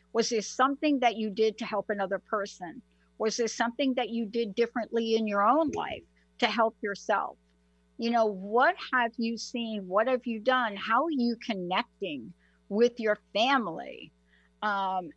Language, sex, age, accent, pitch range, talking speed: English, female, 60-79, American, 195-245 Hz, 165 wpm